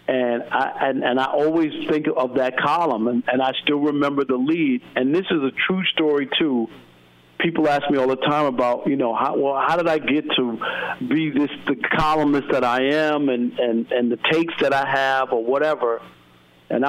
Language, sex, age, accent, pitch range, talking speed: English, male, 50-69, American, 115-145 Hz, 205 wpm